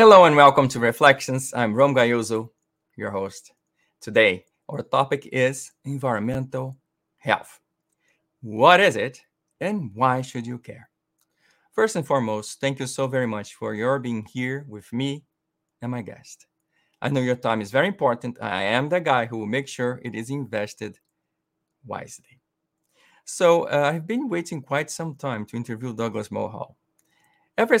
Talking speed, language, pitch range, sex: 160 wpm, English, 120-155 Hz, male